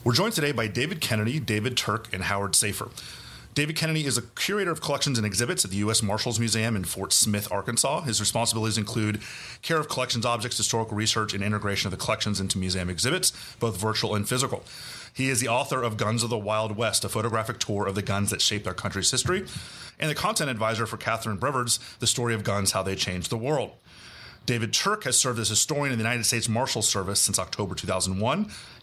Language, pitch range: English, 105-125 Hz